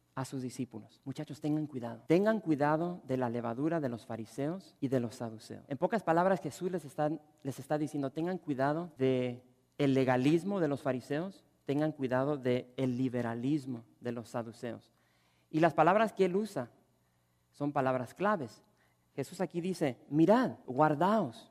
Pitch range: 125-170 Hz